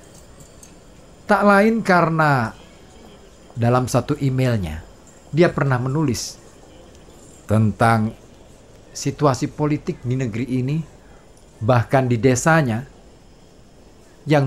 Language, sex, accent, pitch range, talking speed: Indonesian, male, native, 110-170 Hz, 80 wpm